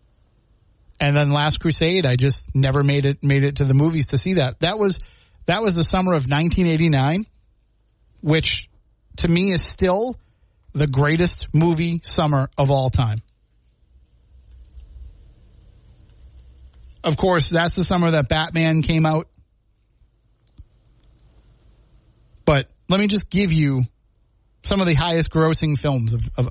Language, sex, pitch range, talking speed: English, male, 115-170 Hz, 135 wpm